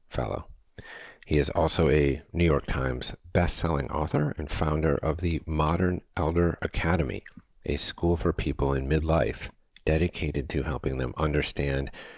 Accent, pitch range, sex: American, 75-95 Hz, male